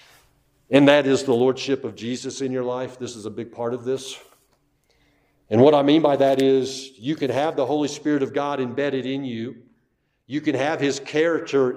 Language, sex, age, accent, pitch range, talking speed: English, male, 50-69, American, 135-185 Hz, 205 wpm